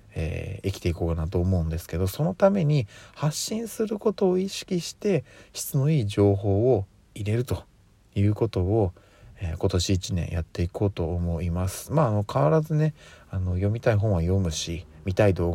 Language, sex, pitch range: Japanese, male, 85-105 Hz